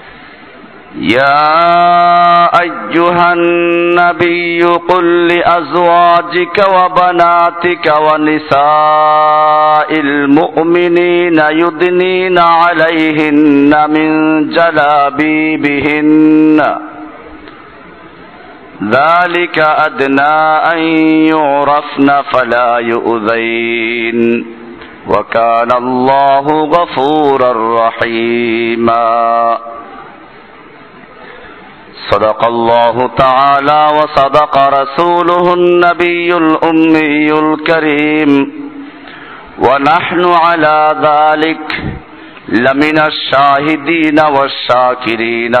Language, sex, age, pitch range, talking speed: Bengali, male, 50-69, 130-170 Hz, 50 wpm